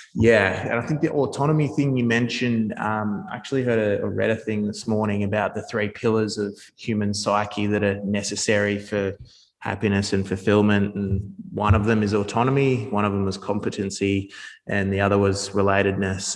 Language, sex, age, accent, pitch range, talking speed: English, male, 20-39, Australian, 100-110 Hz, 175 wpm